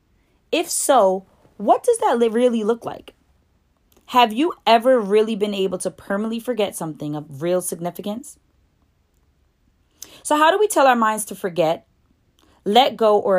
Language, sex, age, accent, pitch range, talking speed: English, female, 20-39, American, 165-240 Hz, 150 wpm